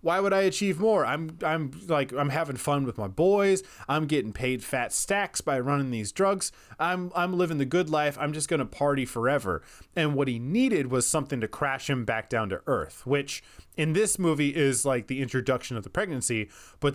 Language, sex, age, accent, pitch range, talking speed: English, male, 20-39, American, 125-160 Hz, 210 wpm